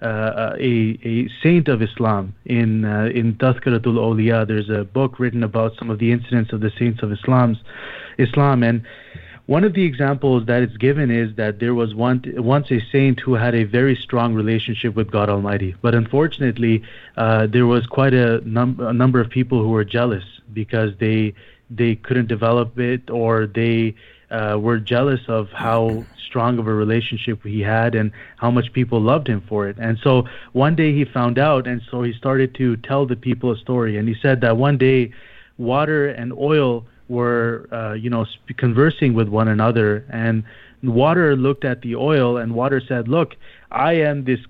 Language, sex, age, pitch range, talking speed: English, male, 30-49, 115-130 Hz, 190 wpm